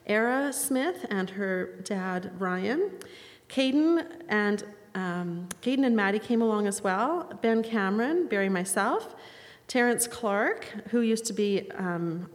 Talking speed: 135 wpm